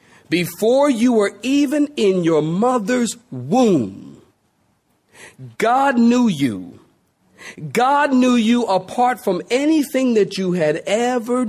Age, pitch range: 50-69, 140-220 Hz